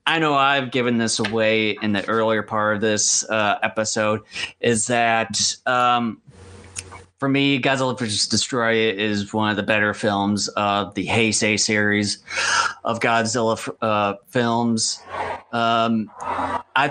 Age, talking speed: 30-49, 140 wpm